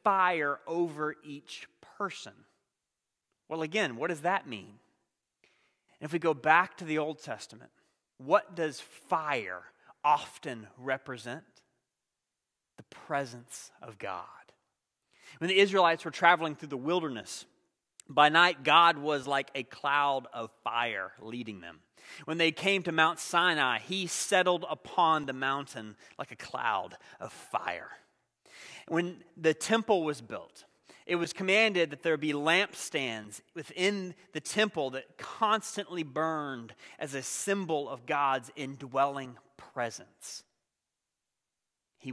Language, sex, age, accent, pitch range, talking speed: English, male, 30-49, American, 130-170 Hz, 125 wpm